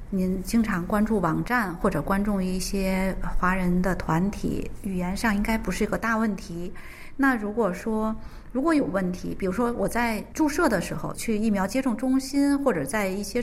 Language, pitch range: Chinese, 175-215 Hz